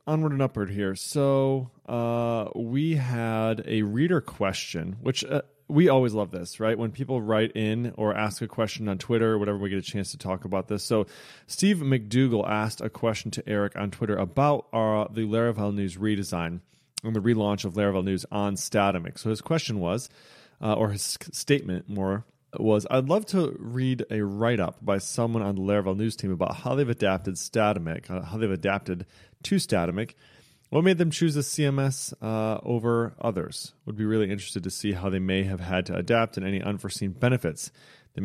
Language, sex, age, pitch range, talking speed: English, male, 30-49, 100-130 Hz, 195 wpm